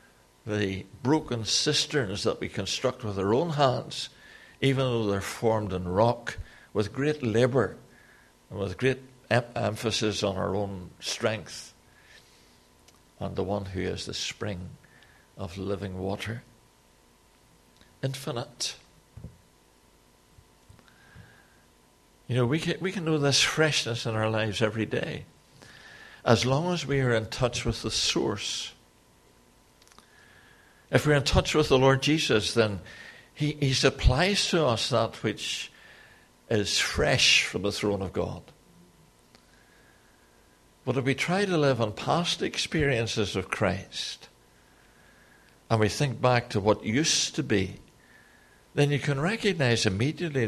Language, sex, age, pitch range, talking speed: English, male, 60-79, 95-135 Hz, 130 wpm